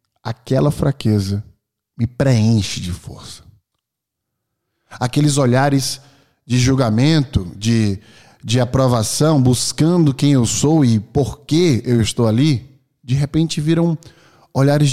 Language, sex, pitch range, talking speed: Portuguese, male, 110-140 Hz, 110 wpm